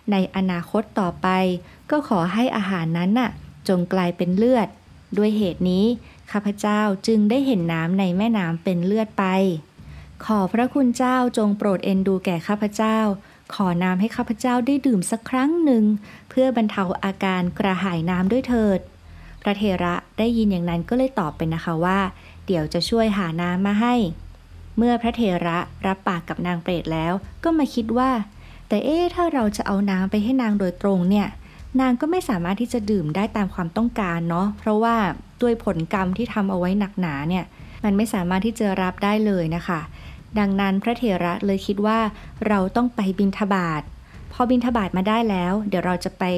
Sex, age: female, 20-39